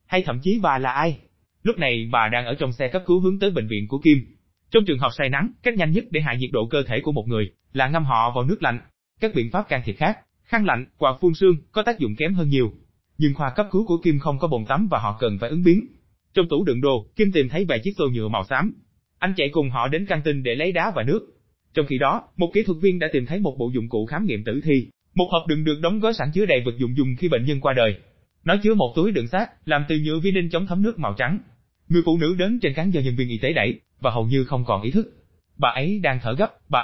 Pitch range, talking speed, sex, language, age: 125-180 Hz, 290 wpm, male, Vietnamese, 20-39